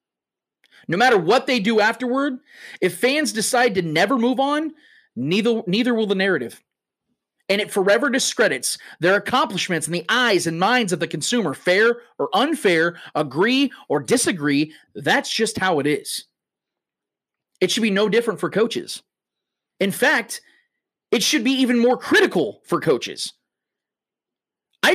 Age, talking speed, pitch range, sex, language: 30-49, 145 wpm, 190-270 Hz, male, English